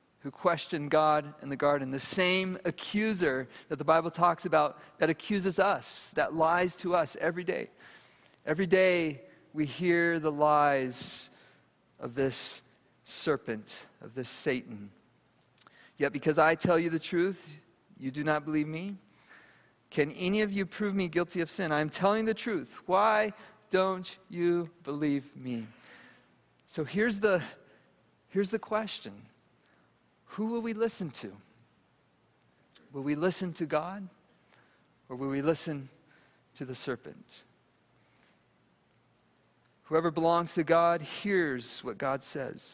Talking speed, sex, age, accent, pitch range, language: 135 wpm, male, 40-59, American, 145-190 Hz, English